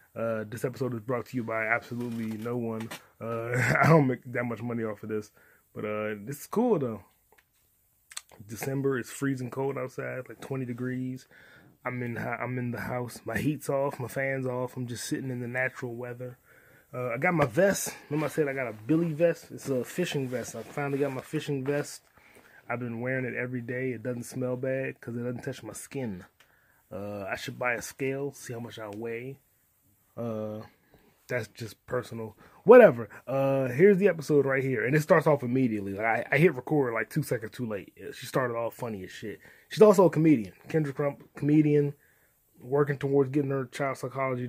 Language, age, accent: English, 20-39, American